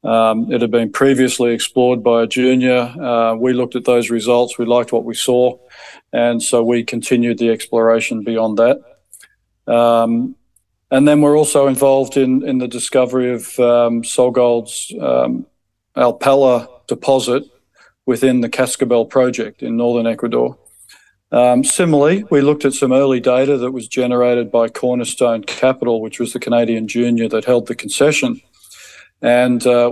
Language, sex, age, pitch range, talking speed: English, male, 40-59, 115-130 Hz, 150 wpm